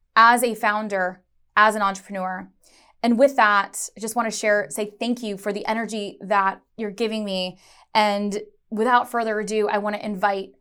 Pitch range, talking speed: 195-230 Hz, 180 wpm